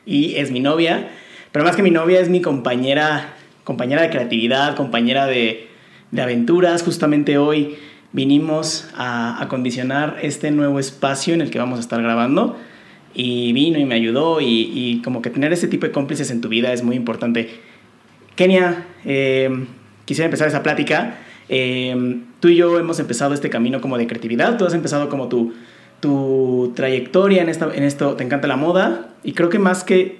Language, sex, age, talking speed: Spanish, male, 30-49, 180 wpm